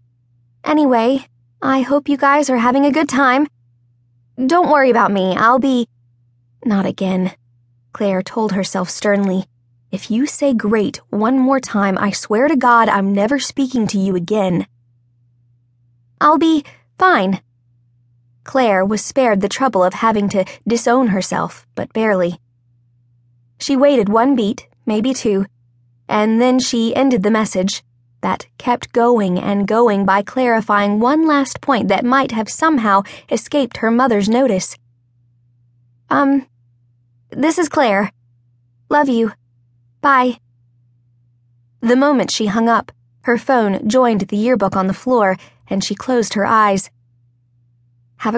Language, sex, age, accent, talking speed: English, female, 20-39, American, 135 wpm